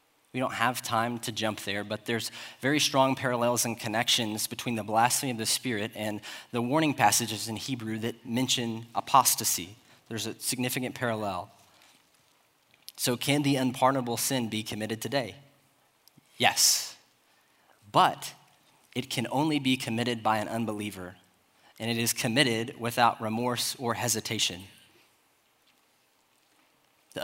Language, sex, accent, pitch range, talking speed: English, male, American, 110-130 Hz, 130 wpm